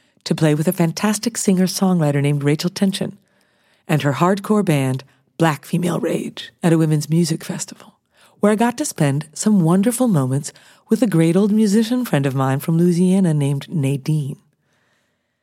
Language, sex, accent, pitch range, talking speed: English, female, American, 155-205 Hz, 160 wpm